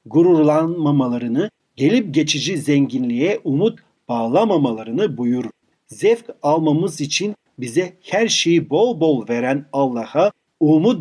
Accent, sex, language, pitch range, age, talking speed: native, male, Turkish, 135-175 Hz, 40-59, 100 wpm